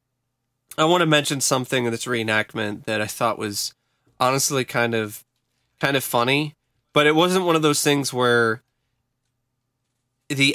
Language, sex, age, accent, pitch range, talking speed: English, male, 20-39, American, 120-145 Hz, 155 wpm